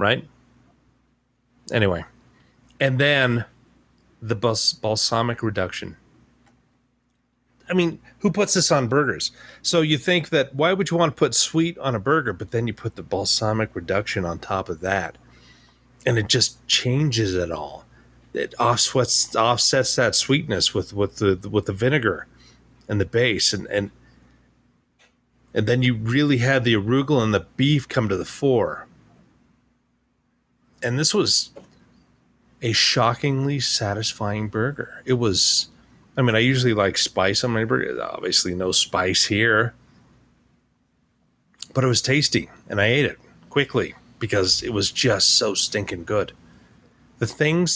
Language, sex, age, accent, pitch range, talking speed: English, male, 40-59, American, 105-140 Hz, 145 wpm